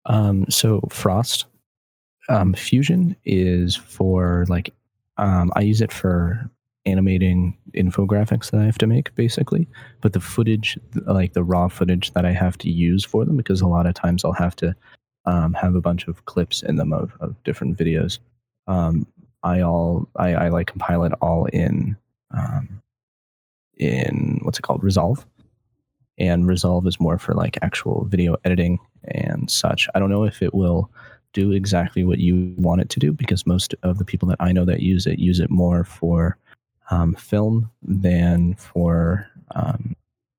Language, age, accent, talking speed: English, 20-39, American, 170 wpm